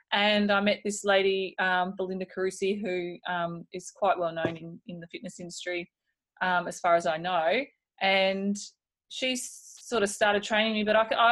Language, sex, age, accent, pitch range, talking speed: English, female, 20-39, Australian, 185-250 Hz, 190 wpm